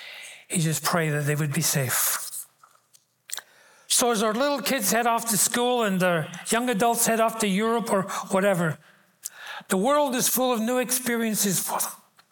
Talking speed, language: 170 wpm, English